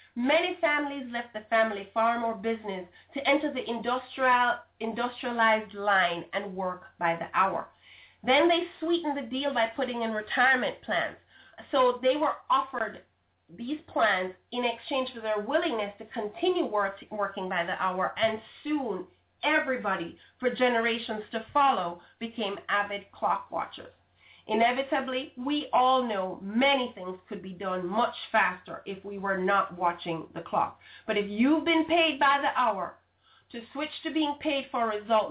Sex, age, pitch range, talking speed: female, 30-49, 205-270 Hz, 155 wpm